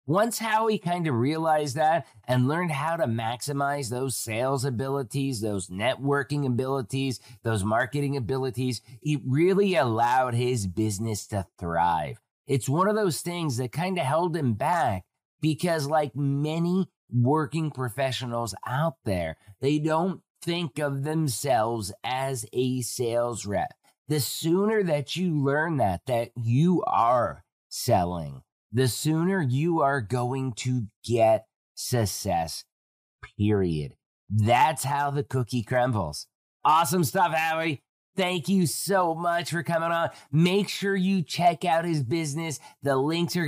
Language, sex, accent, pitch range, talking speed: English, male, American, 125-155 Hz, 135 wpm